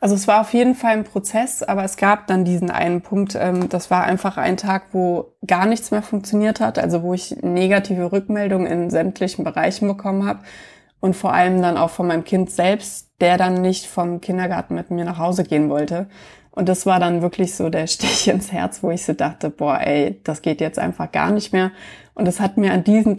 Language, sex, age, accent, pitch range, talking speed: German, female, 20-39, German, 175-200 Hz, 225 wpm